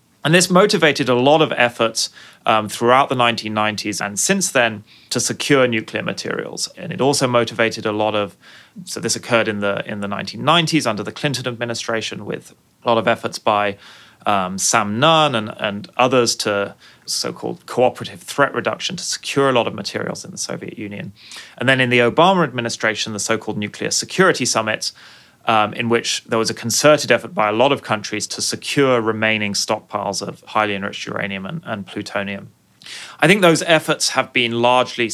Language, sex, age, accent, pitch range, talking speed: English, male, 30-49, British, 110-140 Hz, 180 wpm